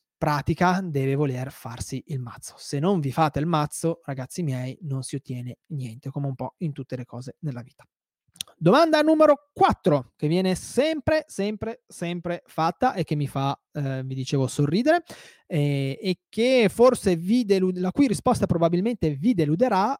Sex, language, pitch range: male, Italian, 145-210 Hz